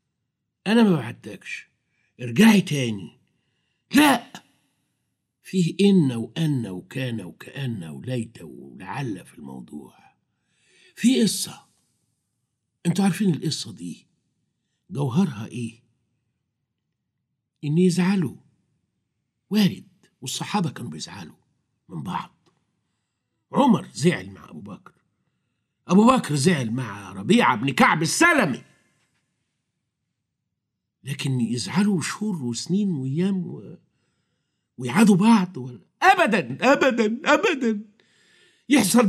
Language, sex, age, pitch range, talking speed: Arabic, male, 60-79, 125-200 Hz, 85 wpm